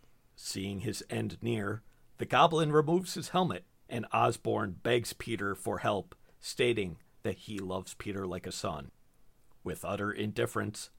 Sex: male